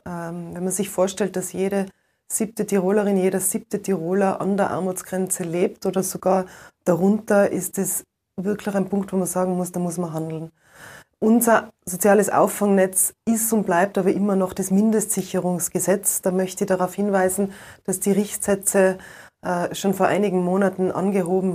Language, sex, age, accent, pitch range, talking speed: German, female, 20-39, German, 185-205 Hz, 155 wpm